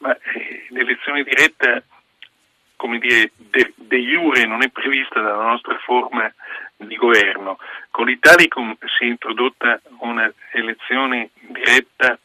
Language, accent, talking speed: Italian, native, 120 wpm